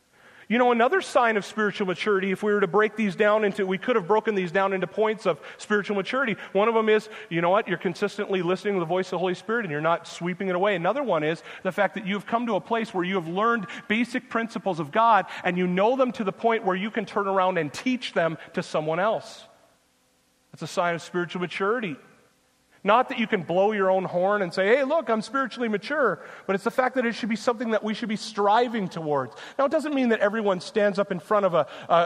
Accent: American